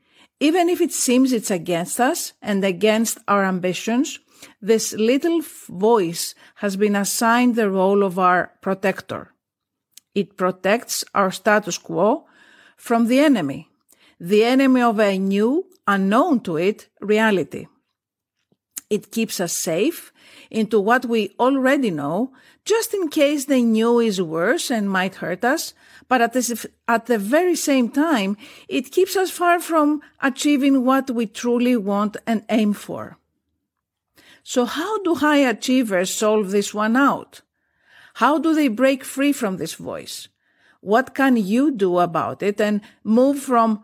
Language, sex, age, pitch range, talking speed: Greek, female, 50-69, 205-275 Hz, 145 wpm